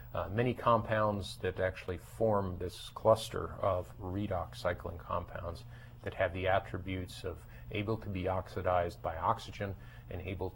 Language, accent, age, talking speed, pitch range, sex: English, American, 40-59, 140 wpm, 95-115 Hz, male